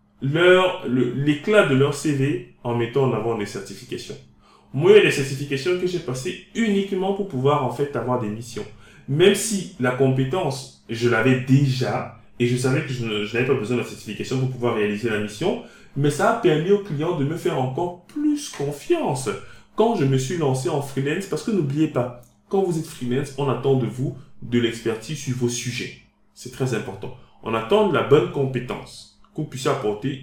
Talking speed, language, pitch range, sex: 200 wpm, French, 120-165 Hz, male